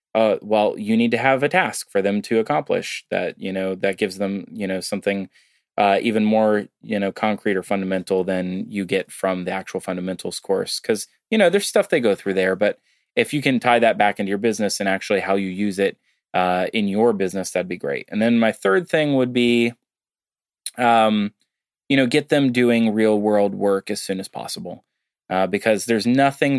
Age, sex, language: 20-39, male, English